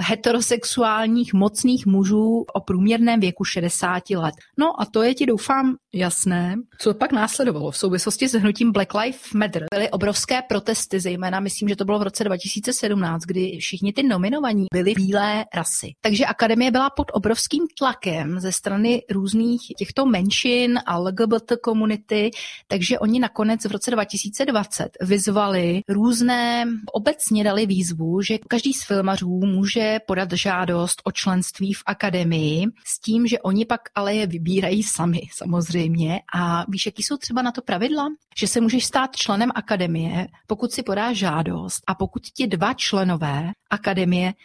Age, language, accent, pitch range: 30-49, Czech, native, 185-235 Hz